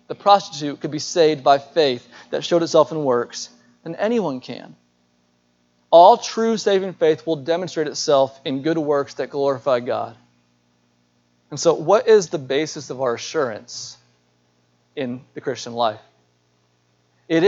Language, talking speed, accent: English, 145 wpm, American